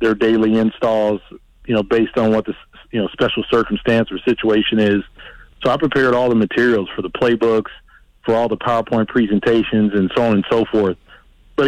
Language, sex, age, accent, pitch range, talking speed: English, male, 40-59, American, 105-120 Hz, 190 wpm